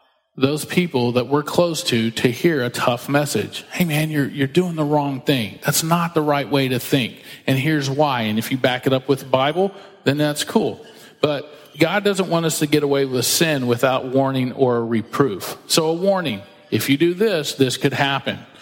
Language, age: English, 40-59